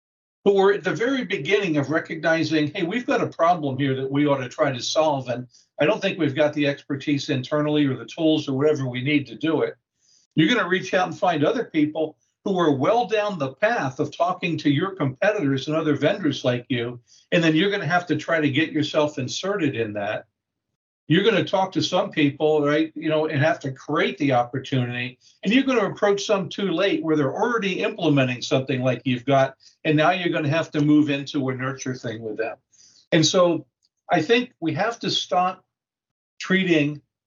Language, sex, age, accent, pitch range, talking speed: English, male, 60-79, American, 135-175 Hz, 215 wpm